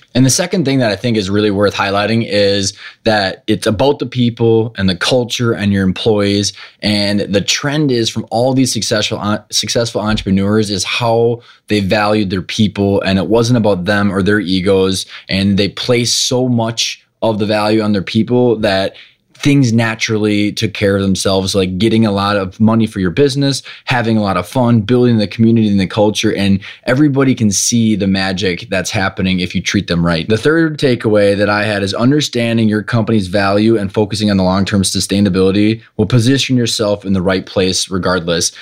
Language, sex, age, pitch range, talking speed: English, male, 20-39, 100-115 Hz, 190 wpm